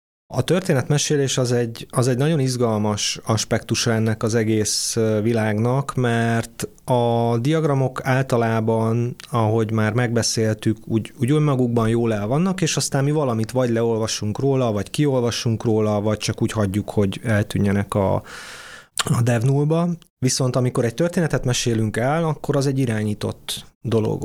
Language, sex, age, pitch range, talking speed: Hungarian, male, 30-49, 110-130 Hz, 140 wpm